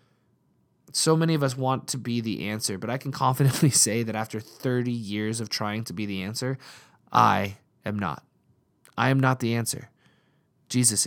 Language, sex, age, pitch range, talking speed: English, male, 20-39, 115-140 Hz, 180 wpm